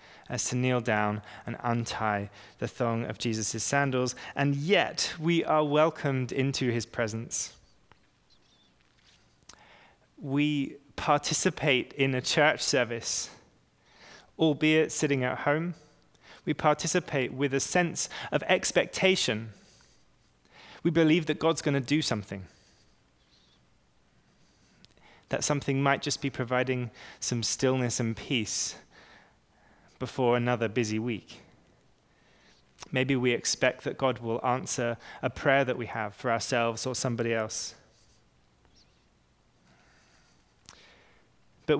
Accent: British